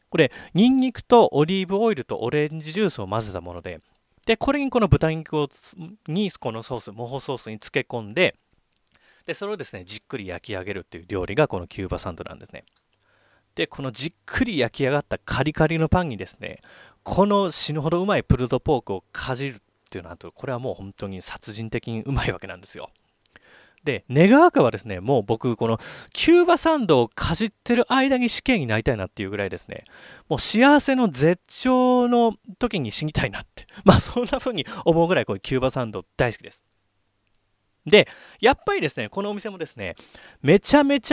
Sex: male